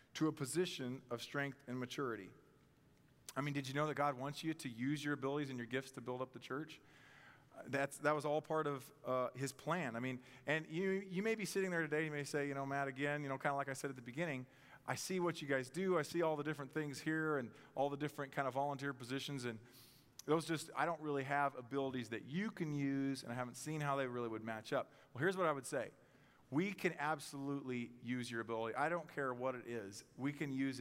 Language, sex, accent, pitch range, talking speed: English, male, American, 130-155 Hz, 250 wpm